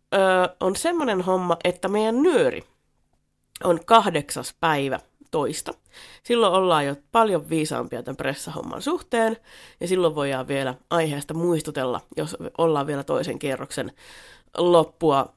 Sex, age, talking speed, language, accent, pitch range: female, 30-49, 115 wpm, Finnish, native, 155-225 Hz